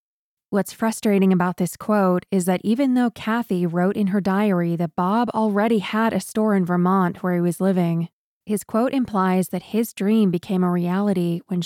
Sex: female